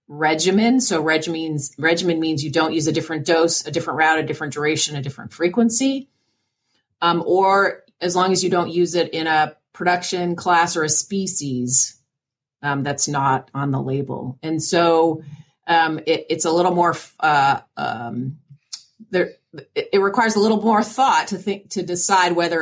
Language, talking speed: English, 170 wpm